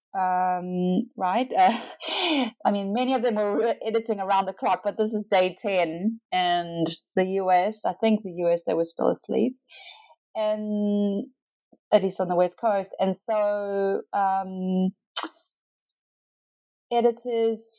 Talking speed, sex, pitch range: 140 wpm, female, 180-230 Hz